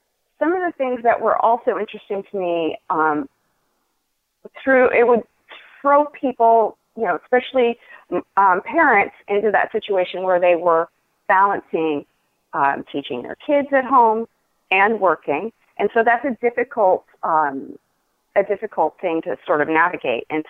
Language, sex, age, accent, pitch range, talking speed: English, female, 40-59, American, 160-225 Hz, 140 wpm